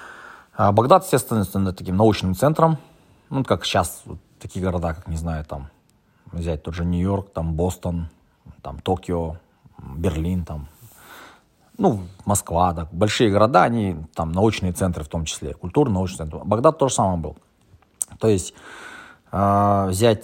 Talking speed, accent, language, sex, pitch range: 145 wpm, native, Russian, male, 85-120 Hz